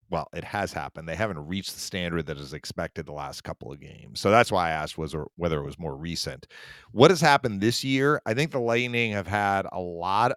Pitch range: 80-100 Hz